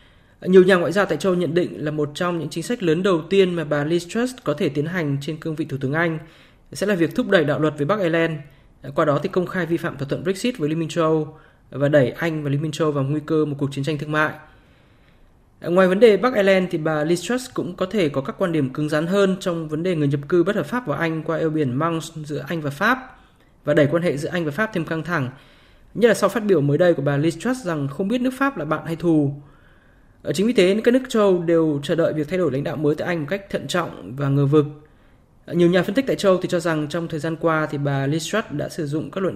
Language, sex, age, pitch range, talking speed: Vietnamese, male, 20-39, 150-185 Hz, 280 wpm